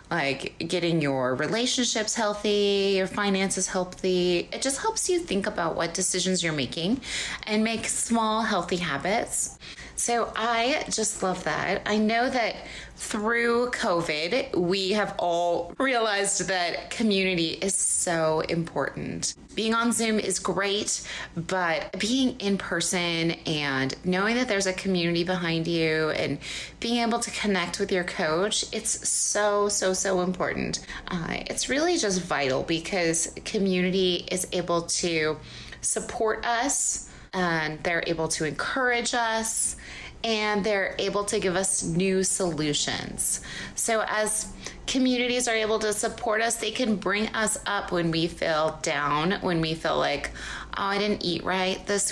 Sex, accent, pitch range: female, American, 170-215 Hz